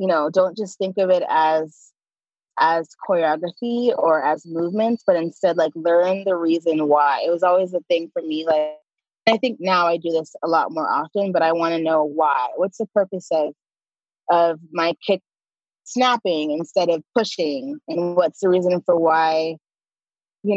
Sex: female